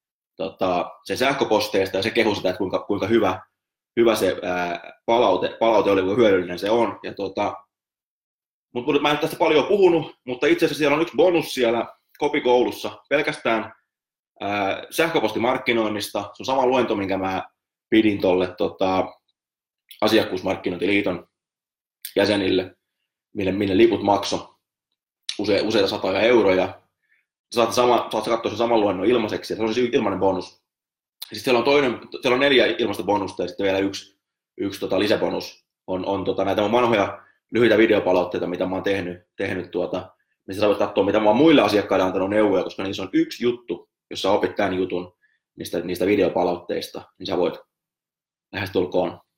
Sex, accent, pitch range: male, native, 95-130 Hz